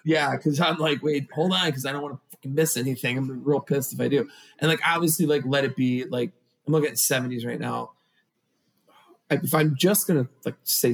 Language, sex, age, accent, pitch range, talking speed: English, male, 30-49, American, 125-155 Hz, 215 wpm